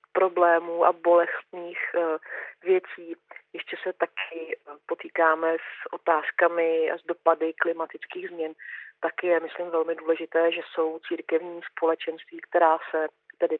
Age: 40-59